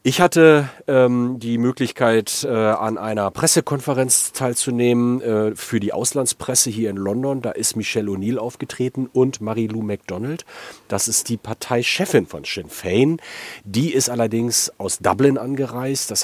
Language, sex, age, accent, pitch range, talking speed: German, male, 40-59, German, 100-125 Hz, 145 wpm